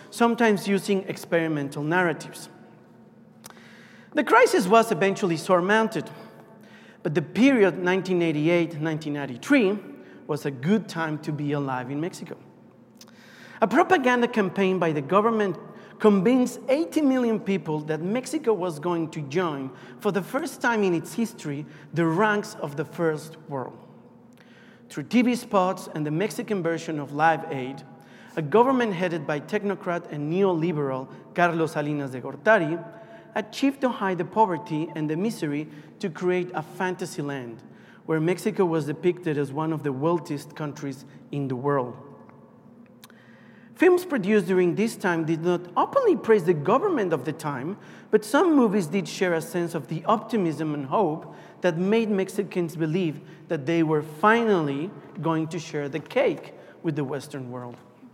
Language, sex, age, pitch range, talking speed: English, male, 40-59, 155-220 Hz, 145 wpm